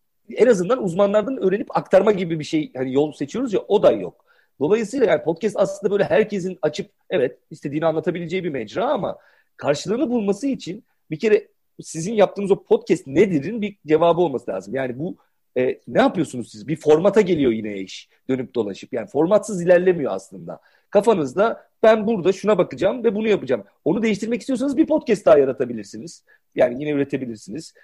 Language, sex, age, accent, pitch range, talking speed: Turkish, male, 40-59, native, 140-220 Hz, 165 wpm